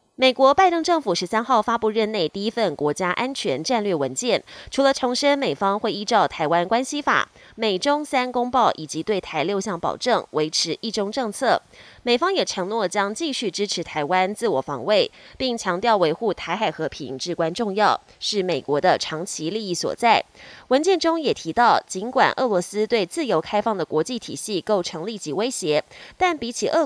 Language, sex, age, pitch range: Chinese, female, 20-39, 180-260 Hz